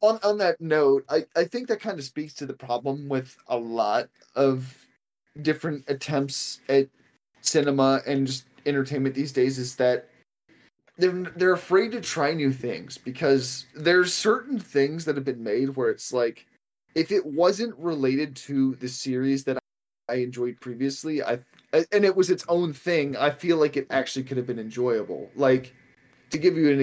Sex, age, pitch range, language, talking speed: male, 20-39, 125-160 Hz, English, 175 wpm